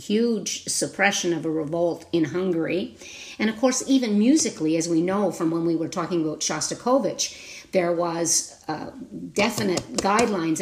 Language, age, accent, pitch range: English, 50-69, American, 170-230 Hz